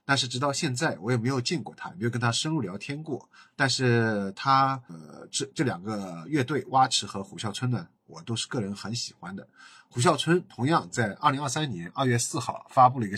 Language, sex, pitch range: Chinese, male, 105-135 Hz